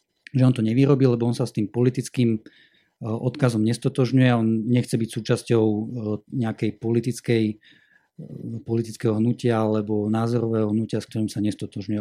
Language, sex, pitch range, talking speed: Slovak, male, 115-135 Hz, 135 wpm